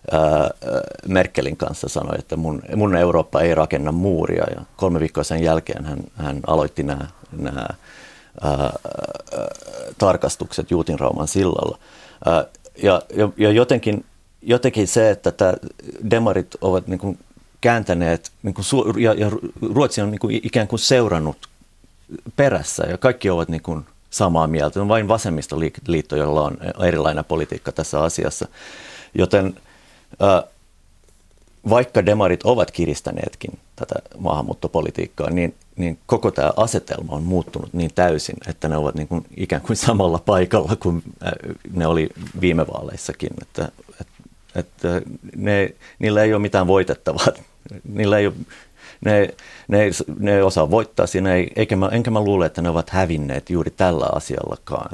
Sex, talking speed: male, 135 wpm